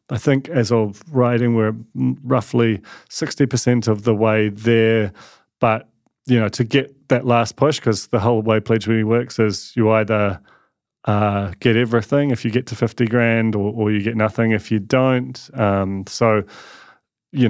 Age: 30-49